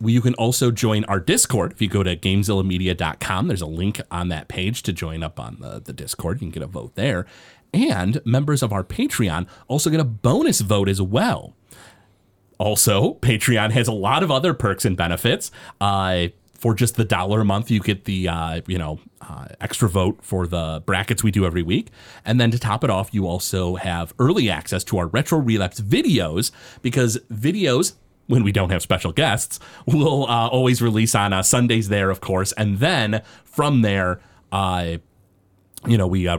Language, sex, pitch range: English, male, 90-120 Hz